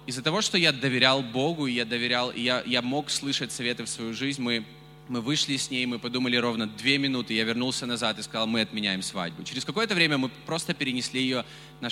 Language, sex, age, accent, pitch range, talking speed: Russian, male, 20-39, native, 125-150 Hz, 210 wpm